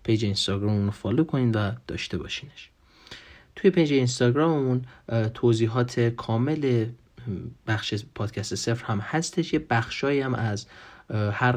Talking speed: 125 wpm